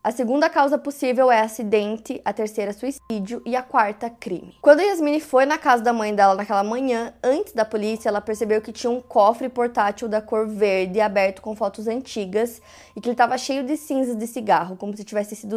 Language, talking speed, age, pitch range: Portuguese, 210 wpm, 20-39, 220-255 Hz